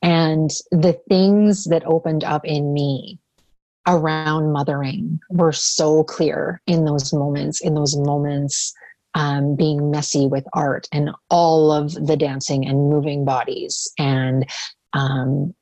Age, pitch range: 30-49, 145-175 Hz